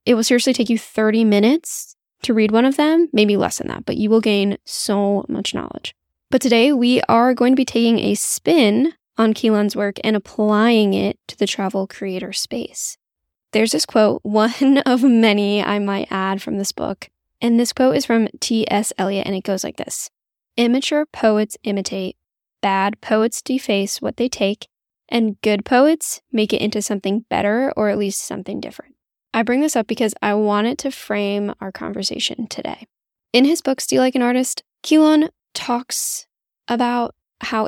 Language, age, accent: English, 10-29, American